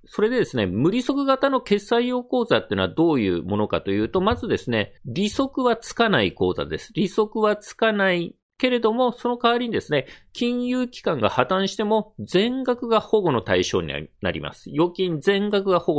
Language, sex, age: Japanese, male, 40-59